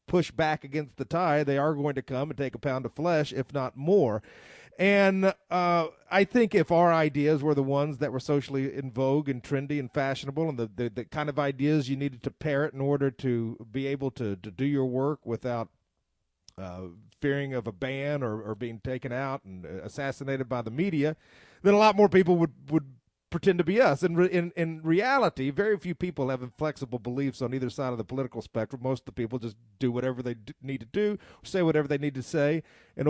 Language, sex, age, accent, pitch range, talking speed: English, male, 50-69, American, 135-180 Hz, 220 wpm